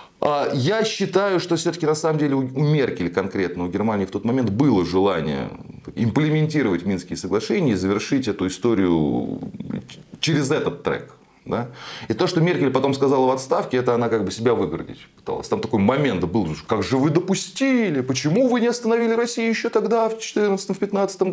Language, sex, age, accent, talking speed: Russian, male, 20-39, native, 165 wpm